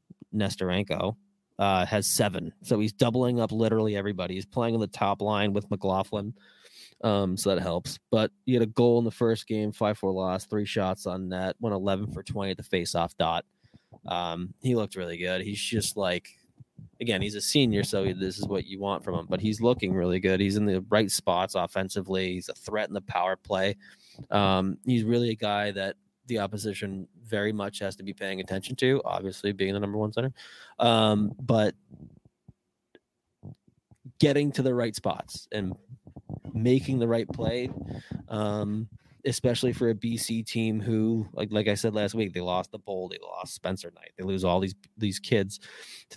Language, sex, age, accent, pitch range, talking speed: English, male, 20-39, American, 95-115 Hz, 190 wpm